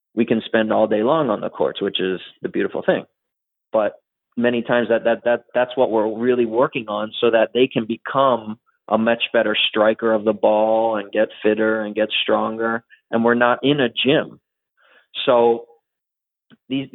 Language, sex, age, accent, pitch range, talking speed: English, male, 30-49, American, 110-125 Hz, 185 wpm